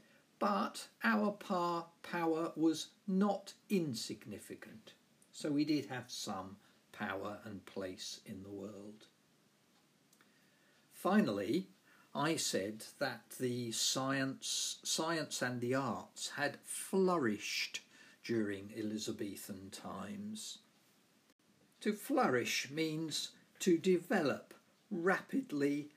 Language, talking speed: English, 90 wpm